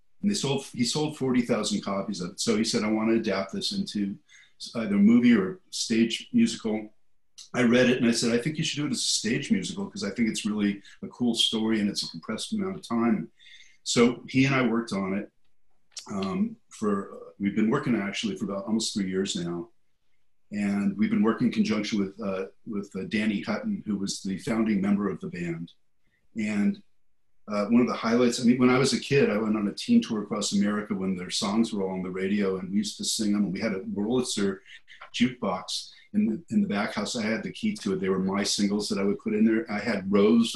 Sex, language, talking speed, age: male, English, 240 wpm, 50-69